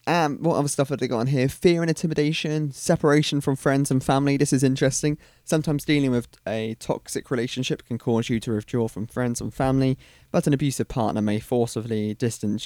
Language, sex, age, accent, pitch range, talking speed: English, male, 20-39, British, 110-140 Hz, 200 wpm